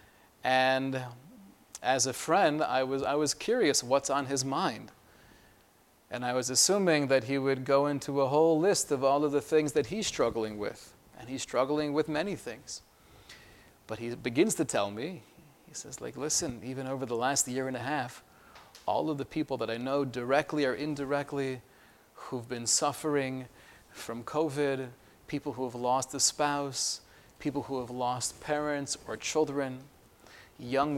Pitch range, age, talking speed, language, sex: 130-150 Hz, 30-49, 170 wpm, English, male